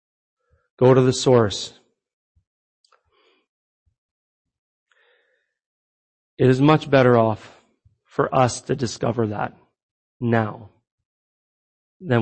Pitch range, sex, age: 115-145 Hz, male, 30-49